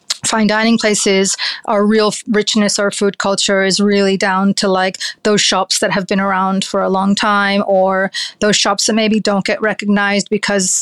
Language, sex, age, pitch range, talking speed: English, female, 30-49, 195-215 Hz, 190 wpm